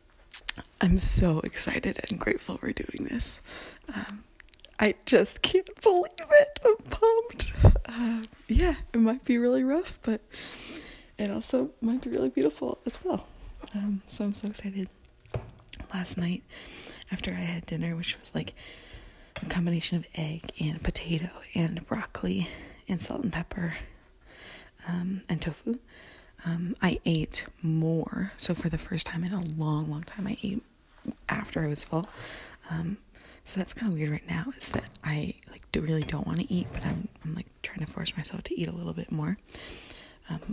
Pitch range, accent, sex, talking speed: 160-220 Hz, American, female, 170 wpm